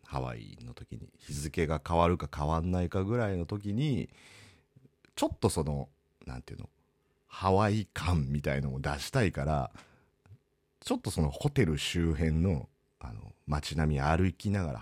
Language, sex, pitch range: Japanese, male, 80-125 Hz